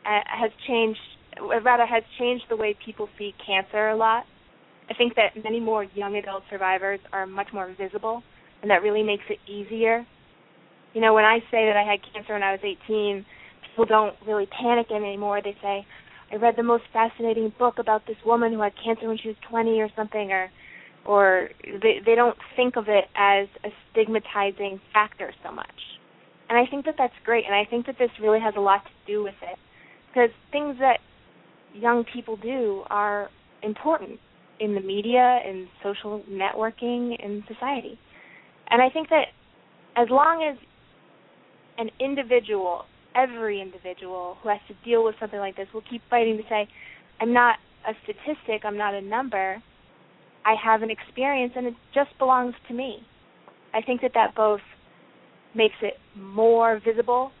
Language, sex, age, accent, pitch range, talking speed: English, female, 20-39, American, 205-235 Hz, 180 wpm